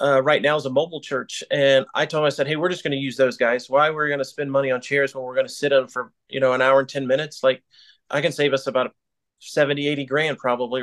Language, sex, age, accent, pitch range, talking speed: English, male, 30-49, American, 135-170 Hz, 295 wpm